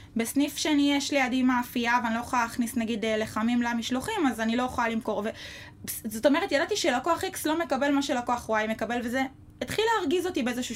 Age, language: 20-39, Hebrew